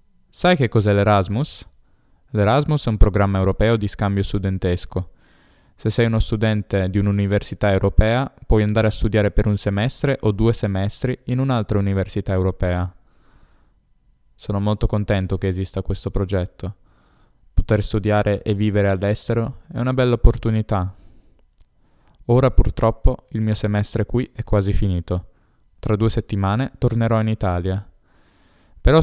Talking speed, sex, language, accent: 135 wpm, male, Italian, native